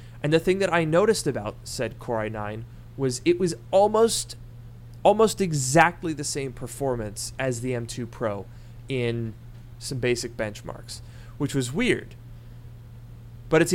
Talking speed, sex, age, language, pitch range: 140 wpm, male, 30-49, English, 120-145 Hz